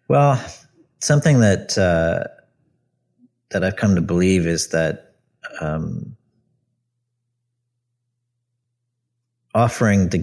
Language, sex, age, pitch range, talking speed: English, male, 40-59, 85-120 Hz, 80 wpm